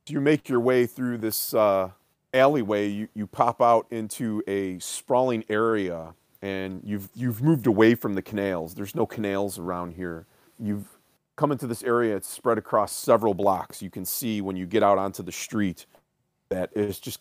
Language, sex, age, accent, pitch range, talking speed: English, male, 30-49, American, 95-120 Hz, 180 wpm